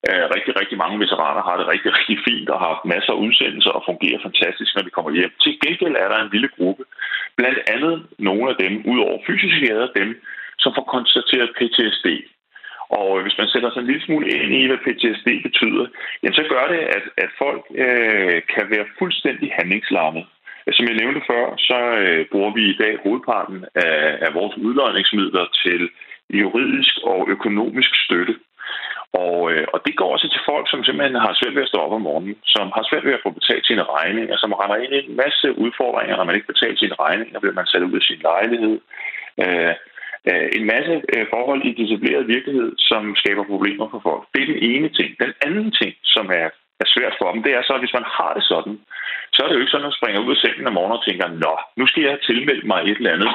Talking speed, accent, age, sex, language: 220 wpm, native, 30-49, male, Danish